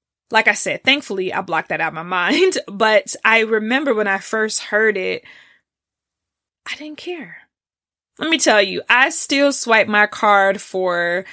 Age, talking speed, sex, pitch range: 20-39, 170 wpm, female, 190-250 Hz